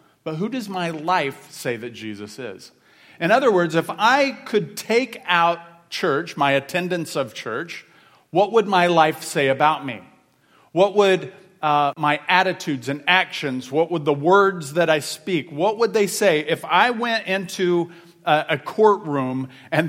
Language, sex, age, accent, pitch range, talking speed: English, male, 40-59, American, 150-190 Hz, 165 wpm